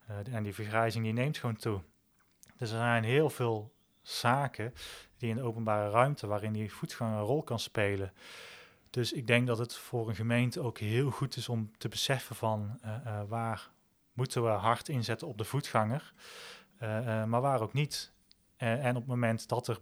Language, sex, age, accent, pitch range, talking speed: Dutch, male, 30-49, Dutch, 110-120 Hz, 195 wpm